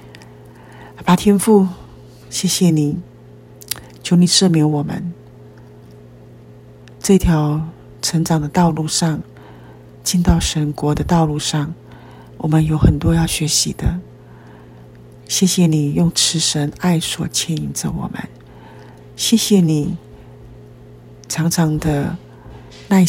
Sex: female